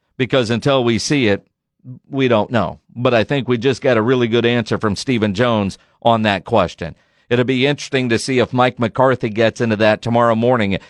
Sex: male